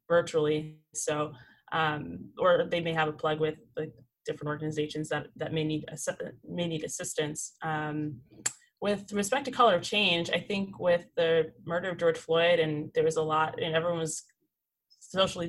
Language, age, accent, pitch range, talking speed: English, 20-39, American, 155-170 Hz, 180 wpm